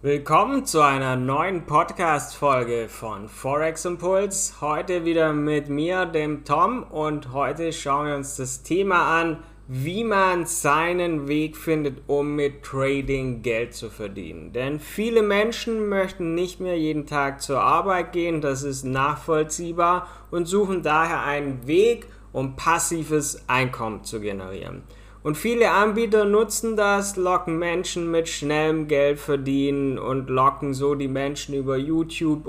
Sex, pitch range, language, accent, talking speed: male, 140-165 Hz, German, German, 140 wpm